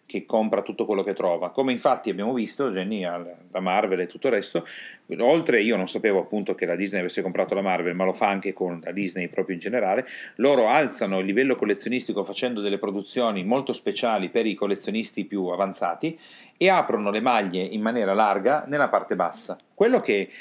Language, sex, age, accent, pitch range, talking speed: Italian, male, 40-59, native, 95-155 Hz, 190 wpm